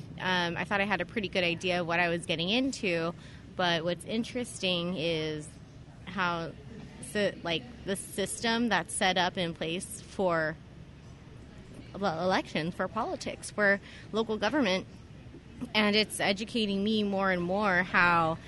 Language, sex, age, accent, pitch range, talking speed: English, female, 20-39, American, 180-225 Hz, 145 wpm